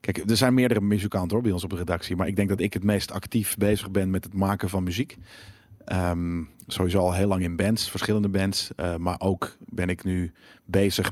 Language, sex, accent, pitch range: Dutch, male, Dutch, 90-110 Hz